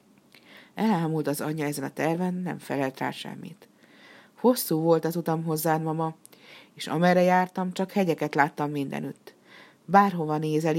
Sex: female